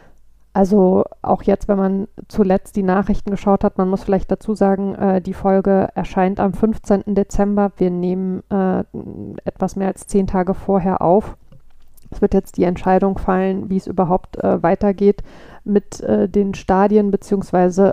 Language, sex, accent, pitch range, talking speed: German, female, German, 180-195 Hz, 160 wpm